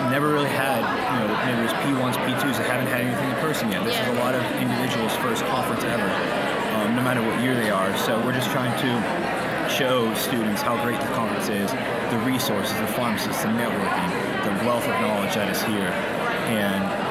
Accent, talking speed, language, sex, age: American, 205 wpm, English, male, 30-49